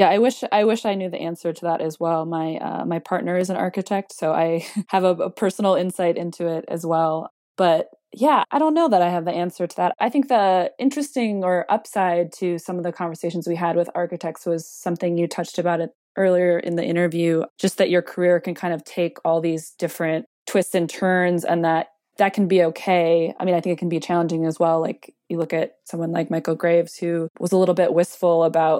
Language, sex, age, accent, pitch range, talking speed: English, female, 20-39, American, 165-180 Hz, 235 wpm